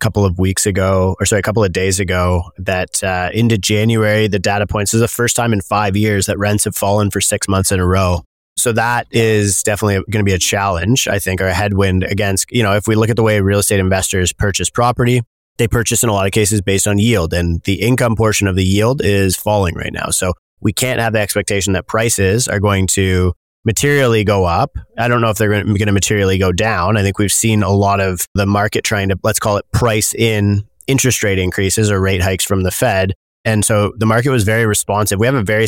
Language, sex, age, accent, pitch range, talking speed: English, male, 20-39, American, 95-110 Hz, 240 wpm